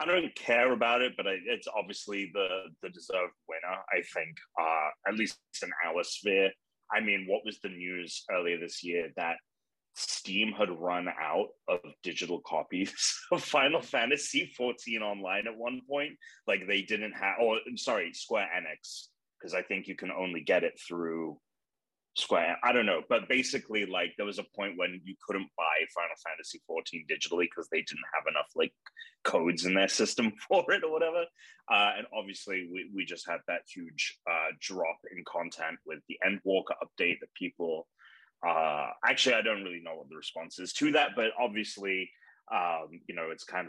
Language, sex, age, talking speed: English, male, 30-49, 185 wpm